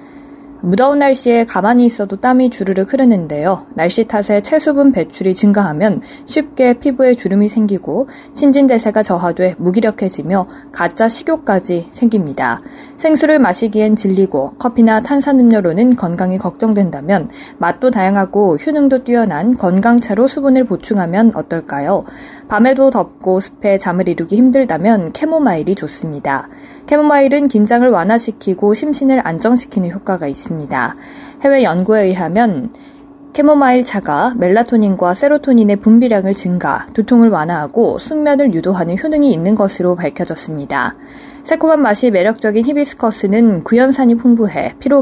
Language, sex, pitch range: Korean, female, 190-270 Hz